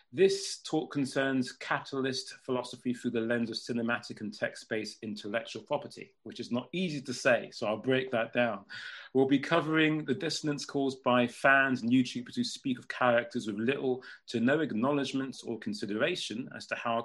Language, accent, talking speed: English, British, 170 wpm